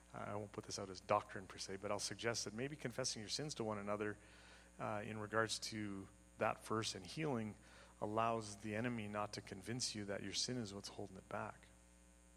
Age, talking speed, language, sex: 30-49, 210 wpm, English, male